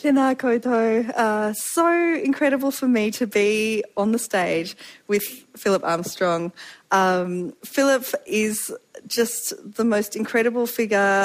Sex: female